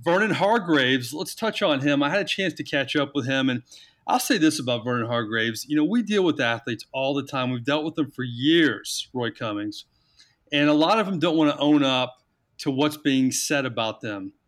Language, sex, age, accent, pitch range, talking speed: English, male, 40-59, American, 130-150 Hz, 230 wpm